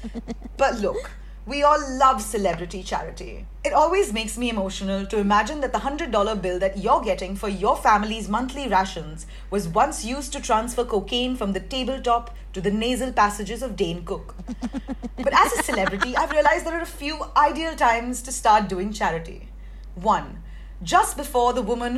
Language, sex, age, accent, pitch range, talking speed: English, female, 30-49, Indian, 210-280 Hz, 170 wpm